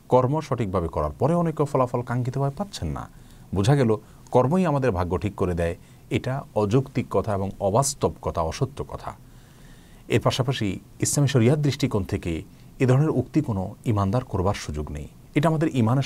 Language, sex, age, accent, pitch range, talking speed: Bengali, male, 40-59, native, 100-140 Hz, 75 wpm